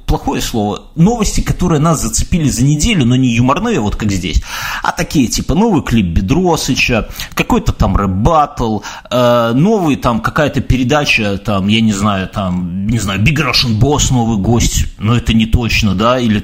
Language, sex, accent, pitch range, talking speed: Russian, male, native, 105-140 Hz, 165 wpm